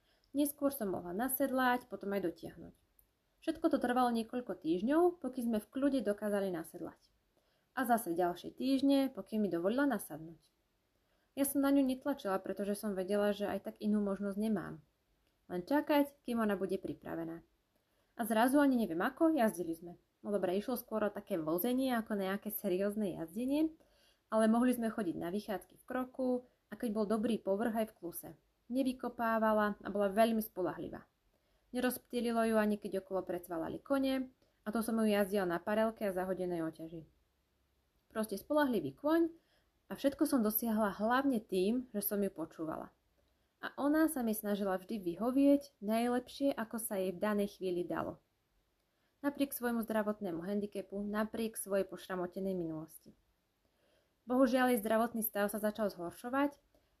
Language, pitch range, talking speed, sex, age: Slovak, 195-250 Hz, 150 wpm, female, 20-39